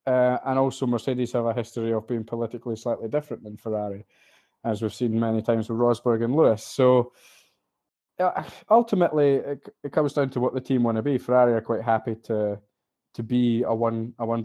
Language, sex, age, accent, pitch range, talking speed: English, male, 20-39, British, 115-140 Hz, 200 wpm